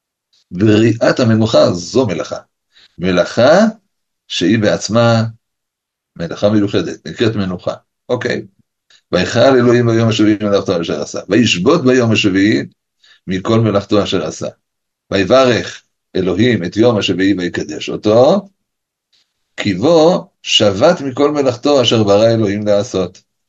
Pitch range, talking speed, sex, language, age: 95-115 Hz, 105 wpm, male, Hebrew, 50-69